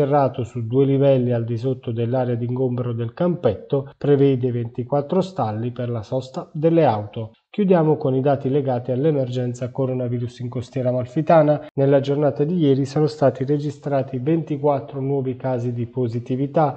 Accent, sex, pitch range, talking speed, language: native, male, 125-145 Hz, 145 wpm, Italian